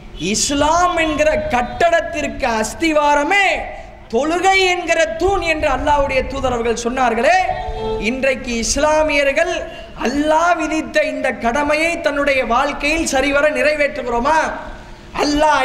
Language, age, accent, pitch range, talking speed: English, 20-39, Indian, 270-320 Hz, 125 wpm